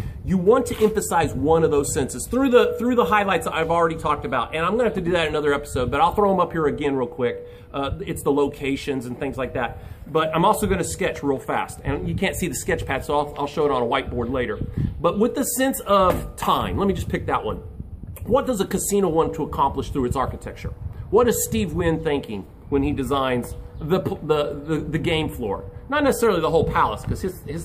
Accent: American